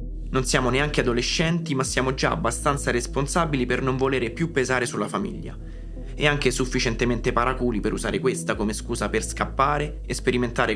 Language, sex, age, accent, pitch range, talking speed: Italian, male, 20-39, native, 120-145 Hz, 160 wpm